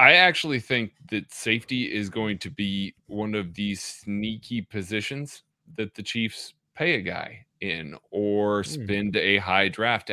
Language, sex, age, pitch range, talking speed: English, male, 30-49, 105-130 Hz, 155 wpm